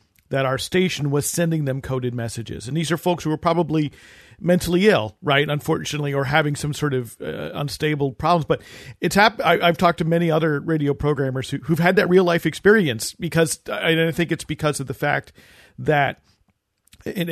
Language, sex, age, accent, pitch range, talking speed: English, male, 40-59, American, 135-170 Hz, 185 wpm